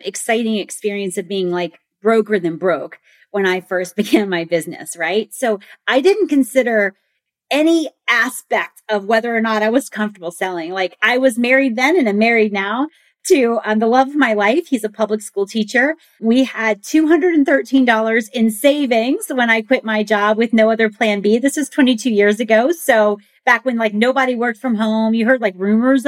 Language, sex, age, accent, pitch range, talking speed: English, female, 30-49, American, 200-260 Hz, 190 wpm